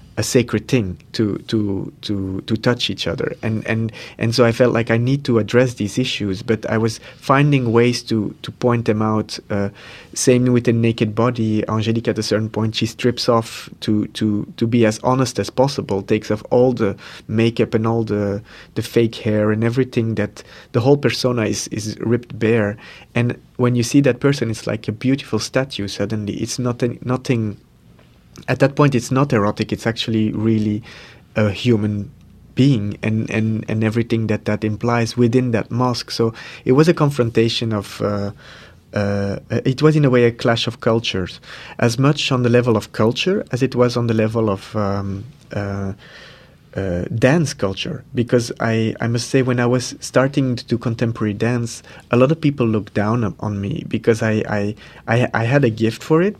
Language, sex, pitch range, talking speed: English, male, 105-125 Hz, 190 wpm